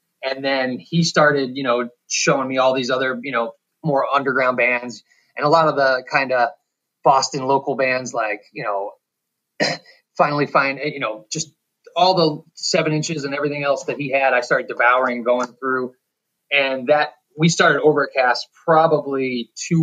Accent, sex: American, male